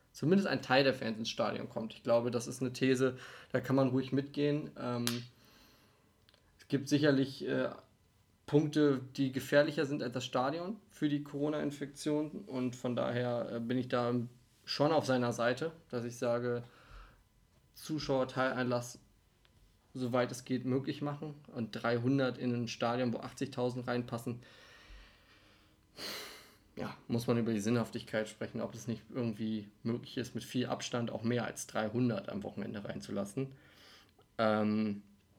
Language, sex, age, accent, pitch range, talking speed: German, male, 20-39, German, 115-140 Hz, 140 wpm